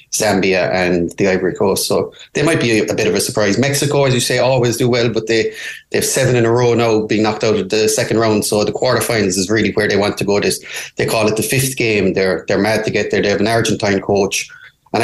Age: 30-49